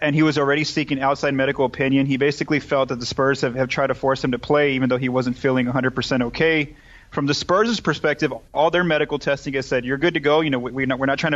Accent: American